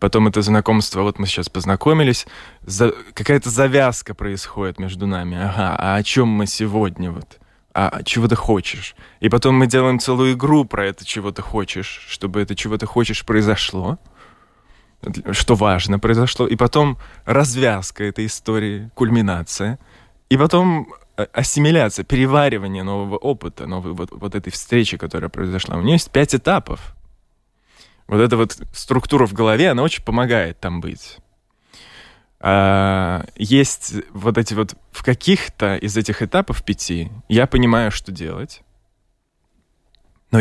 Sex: male